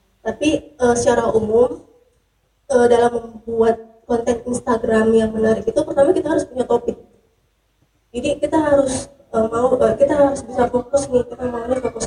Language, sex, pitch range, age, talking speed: Indonesian, female, 205-250 Hz, 20-39, 155 wpm